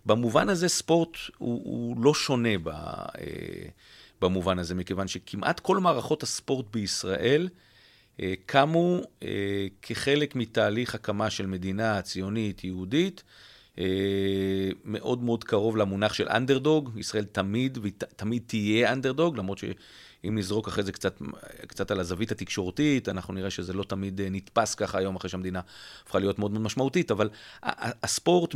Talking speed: 130 wpm